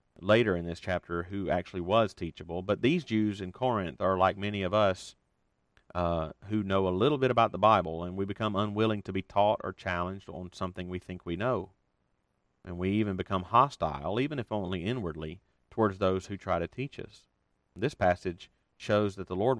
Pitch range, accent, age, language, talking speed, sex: 90-110 Hz, American, 40-59, English, 195 wpm, male